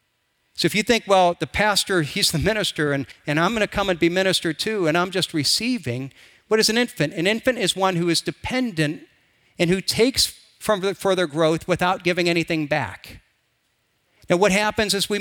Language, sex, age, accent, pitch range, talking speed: English, male, 50-69, American, 165-205 Hz, 195 wpm